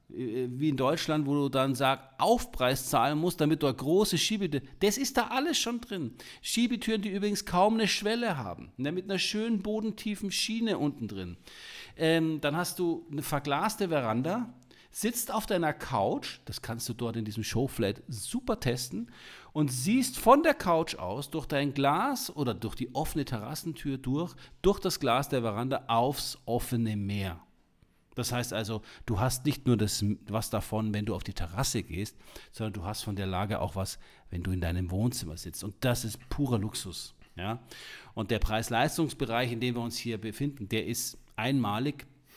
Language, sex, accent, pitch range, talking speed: German, male, German, 110-155 Hz, 175 wpm